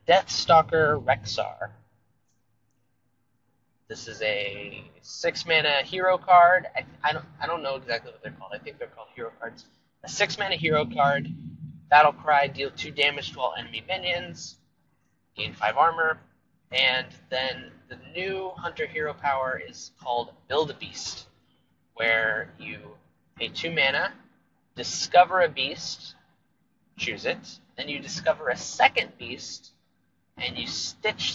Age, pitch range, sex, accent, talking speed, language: 30-49, 120-180 Hz, male, American, 140 wpm, English